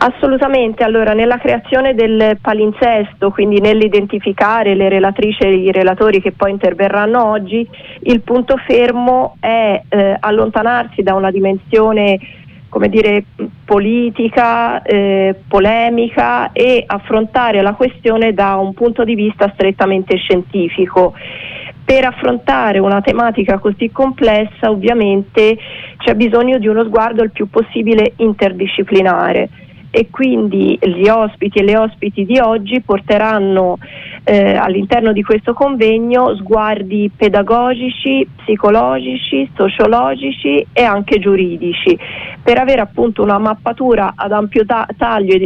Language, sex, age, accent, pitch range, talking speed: Italian, female, 30-49, native, 195-235 Hz, 115 wpm